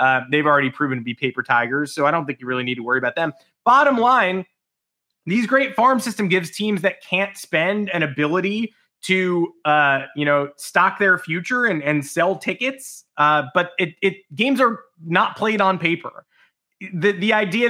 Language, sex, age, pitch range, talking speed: English, male, 20-39, 150-200 Hz, 190 wpm